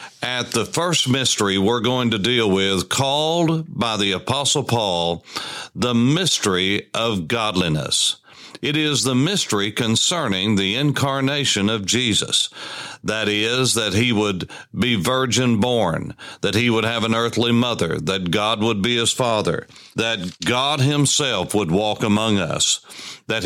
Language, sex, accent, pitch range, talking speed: English, male, American, 105-130 Hz, 145 wpm